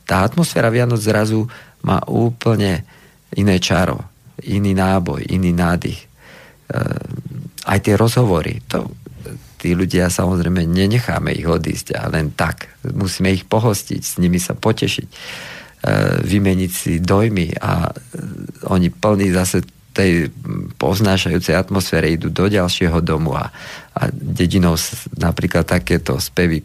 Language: Slovak